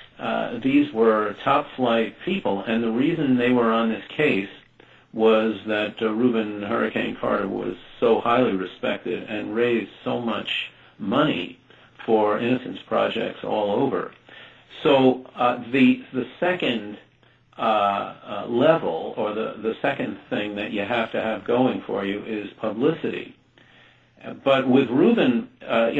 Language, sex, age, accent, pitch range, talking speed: English, male, 50-69, American, 110-130 Hz, 145 wpm